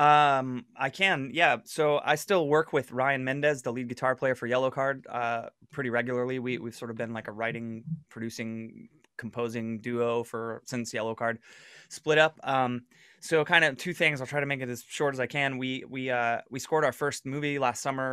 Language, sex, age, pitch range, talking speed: English, male, 20-39, 115-140 Hz, 210 wpm